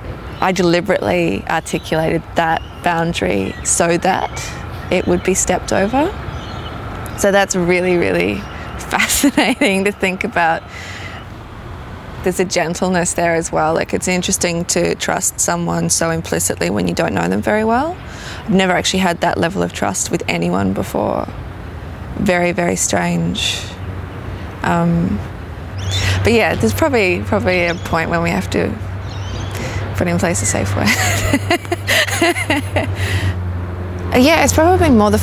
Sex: female